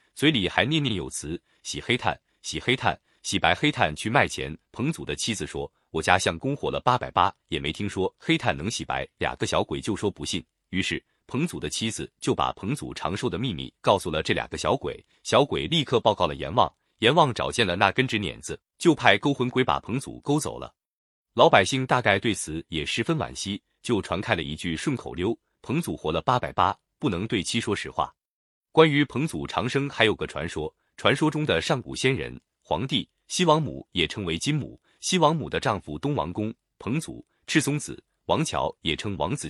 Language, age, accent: Chinese, 30-49, native